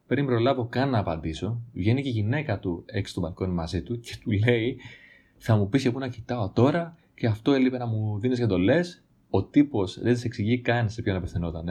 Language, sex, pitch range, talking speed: Greek, male, 100-125 Hz, 230 wpm